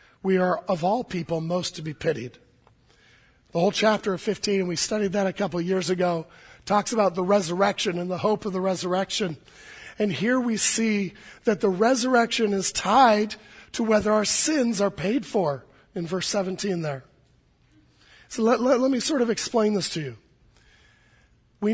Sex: male